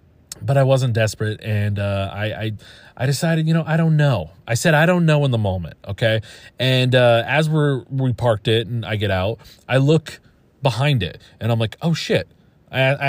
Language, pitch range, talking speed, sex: English, 110-165 Hz, 205 wpm, male